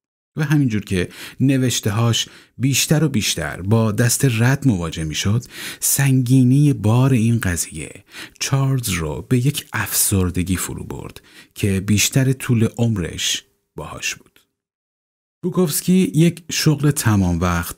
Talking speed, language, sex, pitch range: 115 wpm, Persian, male, 90-130 Hz